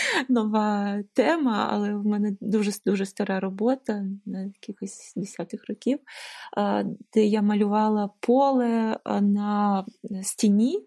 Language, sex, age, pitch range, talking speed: Ukrainian, female, 20-39, 205-235 Hz, 100 wpm